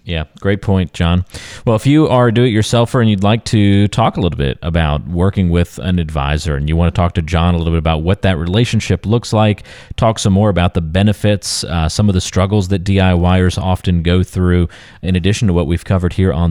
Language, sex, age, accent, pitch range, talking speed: English, male, 30-49, American, 80-105 Hz, 230 wpm